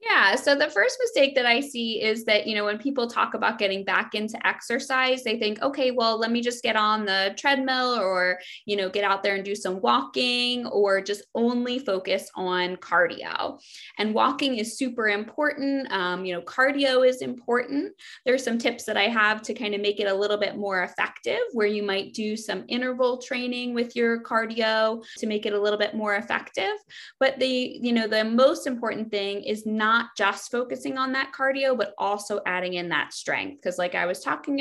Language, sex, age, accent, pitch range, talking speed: English, female, 20-39, American, 200-255 Hz, 205 wpm